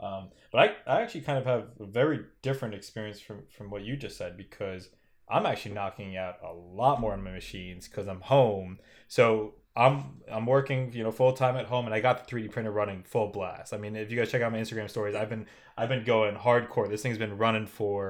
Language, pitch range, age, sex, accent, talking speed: English, 100-120 Hz, 20-39, male, American, 240 wpm